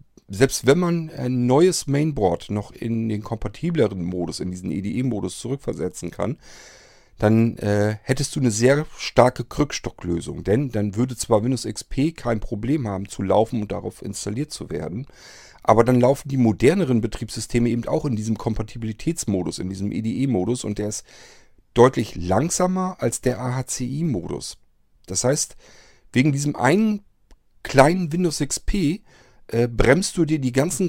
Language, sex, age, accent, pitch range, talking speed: German, male, 40-59, German, 110-140 Hz, 150 wpm